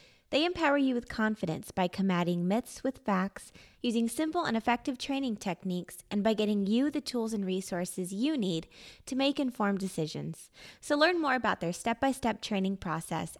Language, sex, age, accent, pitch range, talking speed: English, female, 20-39, American, 195-265 Hz, 180 wpm